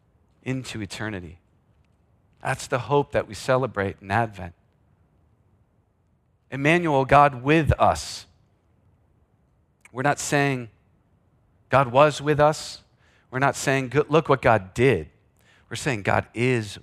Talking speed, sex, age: 120 wpm, male, 40-59